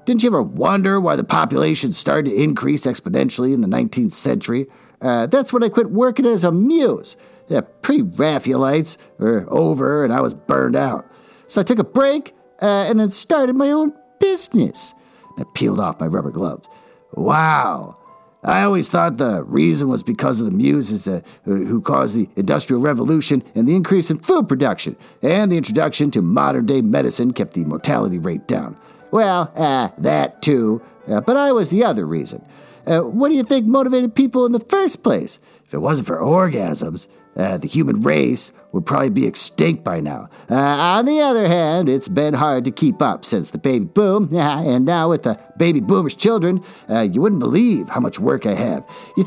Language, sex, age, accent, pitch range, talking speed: English, male, 50-69, American, 155-245 Hz, 185 wpm